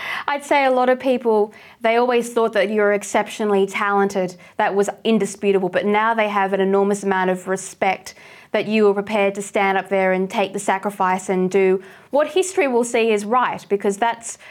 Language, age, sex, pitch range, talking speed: English, 20-39, female, 195-245 Hz, 195 wpm